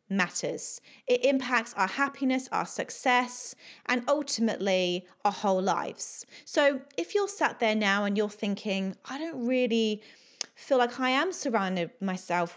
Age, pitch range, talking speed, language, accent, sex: 30-49, 200-260 Hz, 145 wpm, English, British, female